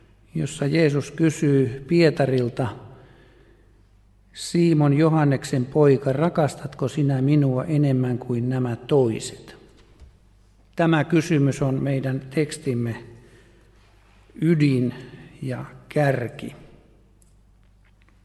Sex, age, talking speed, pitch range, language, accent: male, 60-79, 70 wpm, 120-150 Hz, Finnish, native